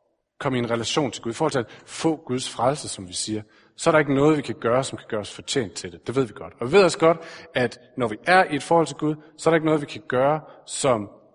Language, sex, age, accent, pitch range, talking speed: Danish, male, 40-59, native, 120-165 Hz, 305 wpm